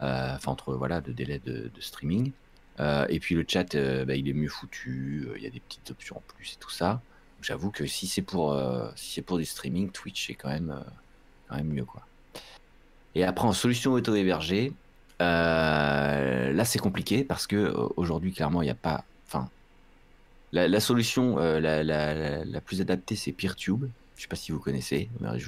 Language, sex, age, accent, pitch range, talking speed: French, male, 30-49, French, 70-100 Hz, 210 wpm